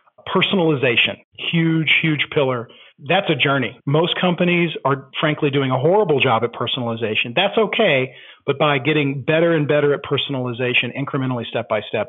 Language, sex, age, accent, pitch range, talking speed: English, male, 40-59, American, 130-170 Hz, 145 wpm